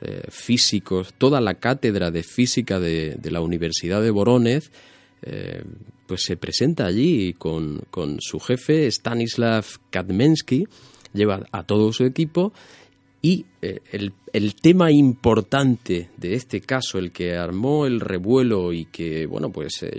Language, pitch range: Spanish, 95-125 Hz